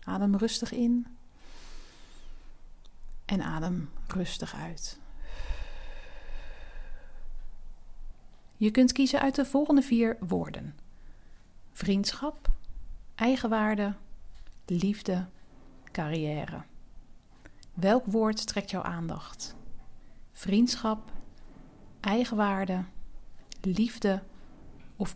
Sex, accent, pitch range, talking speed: female, Dutch, 180-240 Hz, 65 wpm